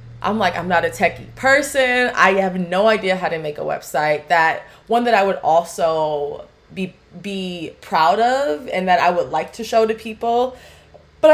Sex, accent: female, American